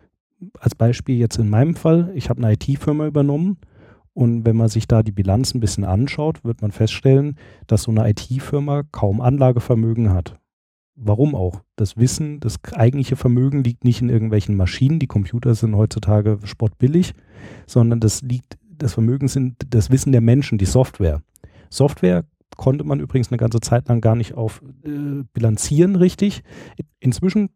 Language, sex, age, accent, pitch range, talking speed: German, male, 40-59, German, 110-135 Hz, 165 wpm